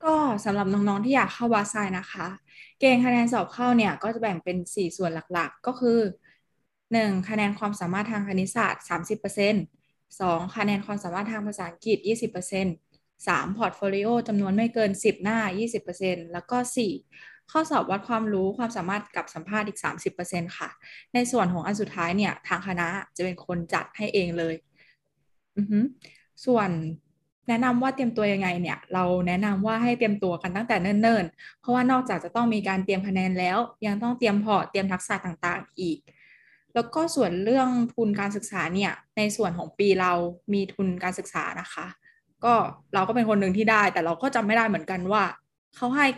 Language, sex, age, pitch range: Thai, female, 10-29, 180-225 Hz